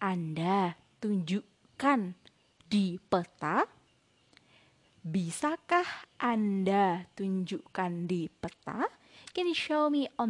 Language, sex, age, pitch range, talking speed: Indonesian, female, 20-39, 180-235 Hz, 80 wpm